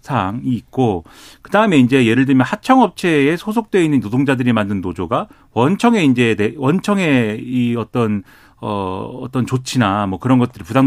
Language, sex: Korean, male